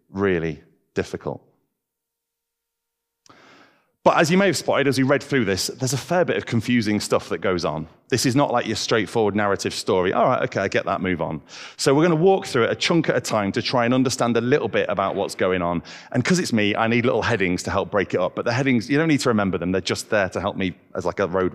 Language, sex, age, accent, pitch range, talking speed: English, male, 30-49, British, 95-140 Hz, 260 wpm